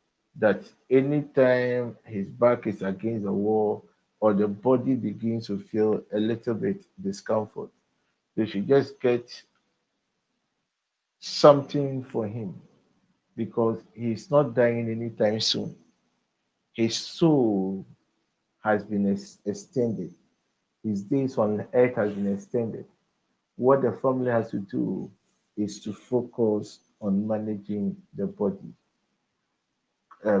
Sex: male